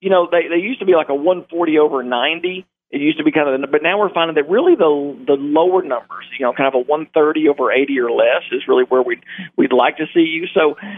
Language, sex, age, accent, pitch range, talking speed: English, male, 50-69, American, 125-165 Hz, 260 wpm